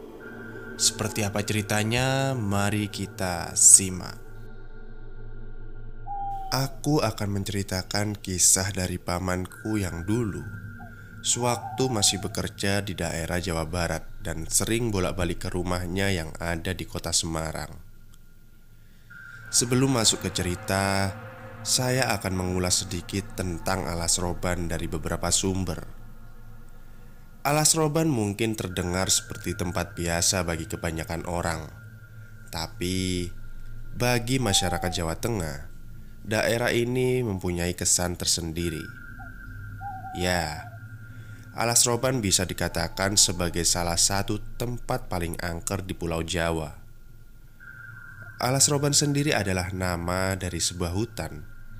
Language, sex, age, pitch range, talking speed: Indonesian, male, 20-39, 90-115 Hz, 100 wpm